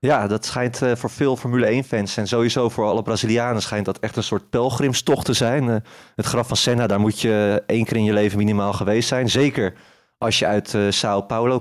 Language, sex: Dutch, male